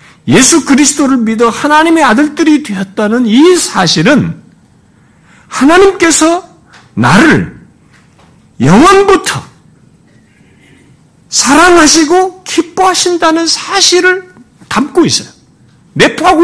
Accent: native